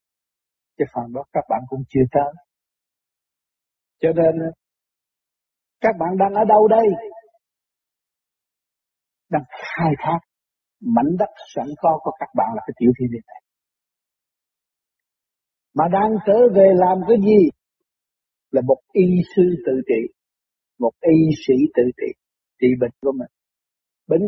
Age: 60-79